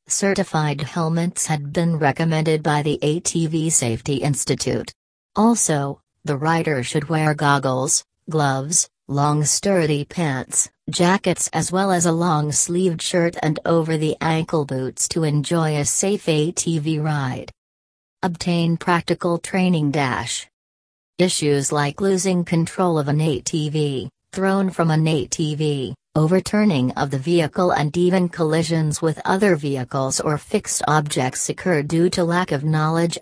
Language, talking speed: English, 125 wpm